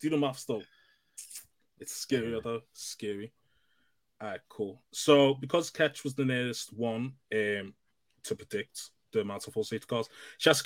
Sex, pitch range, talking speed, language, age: male, 110-140 Hz, 165 wpm, English, 20-39